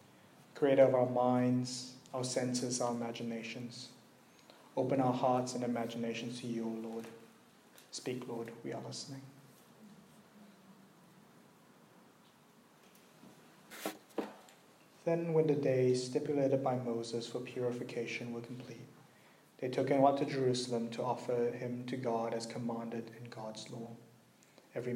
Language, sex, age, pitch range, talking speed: English, male, 30-49, 120-130 Hz, 120 wpm